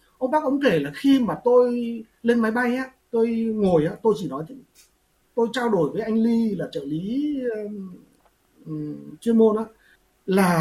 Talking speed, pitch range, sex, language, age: 165 wpm, 200-260 Hz, male, Vietnamese, 30-49